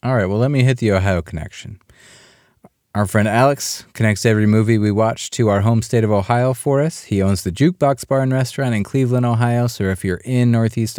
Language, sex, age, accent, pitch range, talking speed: English, male, 30-49, American, 105-130 Hz, 220 wpm